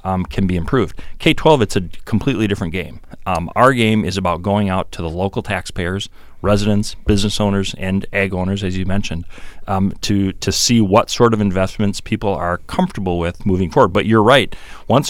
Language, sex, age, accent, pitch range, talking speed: English, male, 40-59, American, 95-115 Hz, 190 wpm